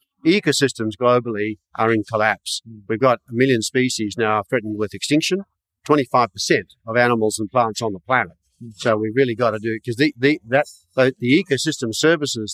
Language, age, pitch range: English, 50-69, 110-130 Hz